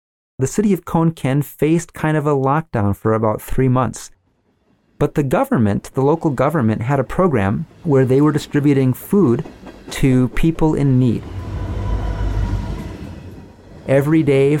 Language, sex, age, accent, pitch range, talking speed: English, male, 30-49, American, 110-145 Hz, 140 wpm